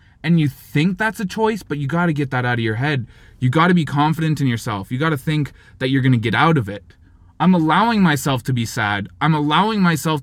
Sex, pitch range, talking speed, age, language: male, 115-175 Hz, 260 wpm, 20-39, English